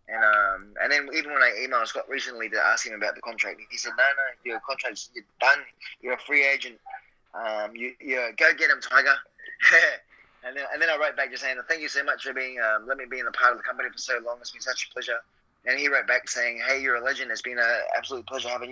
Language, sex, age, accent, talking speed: English, male, 20-39, Australian, 265 wpm